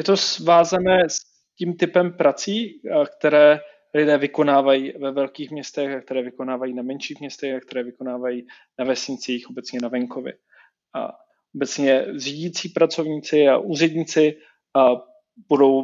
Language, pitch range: Czech, 130-150 Hz